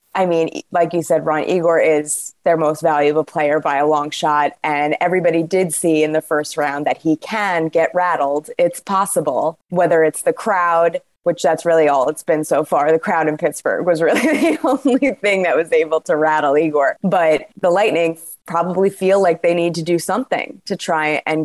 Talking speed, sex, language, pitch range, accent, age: 200 wpm, female, English, 160-205 Hz, American, 20-39